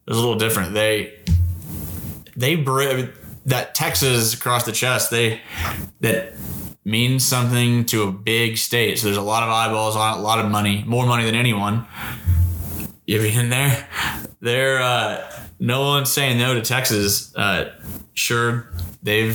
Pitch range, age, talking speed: 105-120 Hz, 20-39, 160 wpm